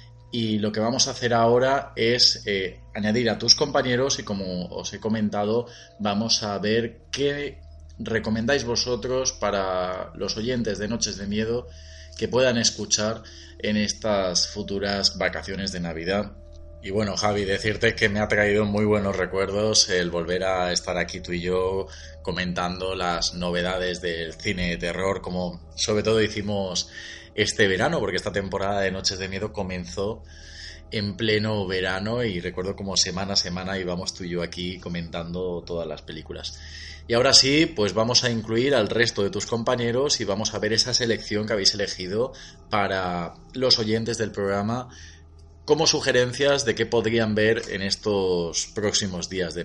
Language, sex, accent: Spanish, male, Spanish